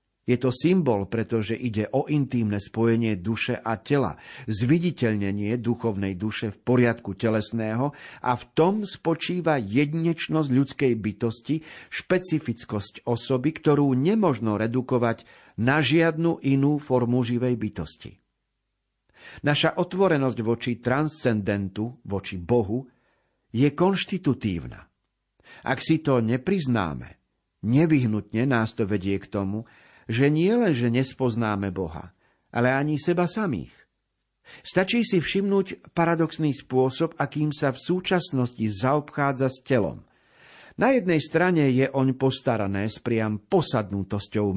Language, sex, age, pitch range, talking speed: Slovak, male, 50-69, 110-150 Hz, 110 wpm